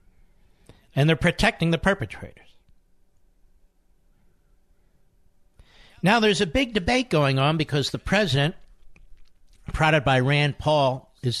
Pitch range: 105-160 Hz